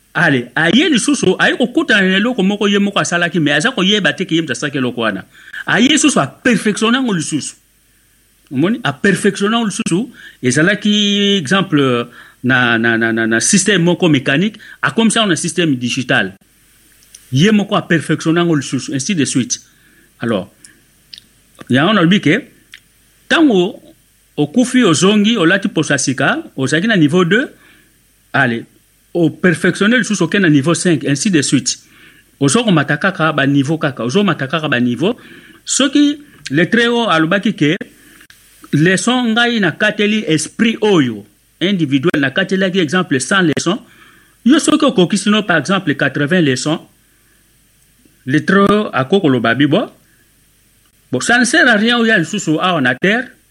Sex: male